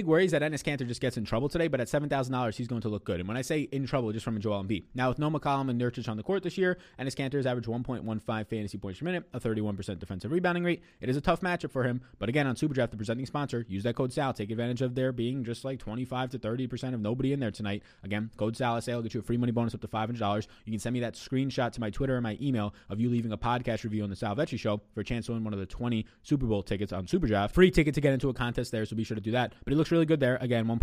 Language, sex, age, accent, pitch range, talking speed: English, male, 20-39, American, 110-145 Hz, 305 wpm